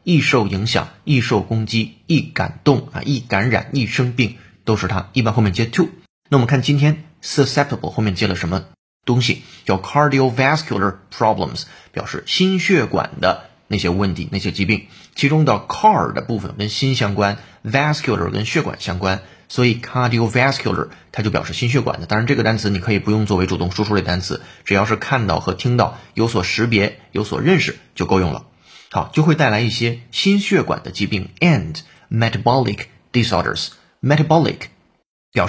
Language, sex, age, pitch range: Chinese, male, 30-49, 95-135 Hz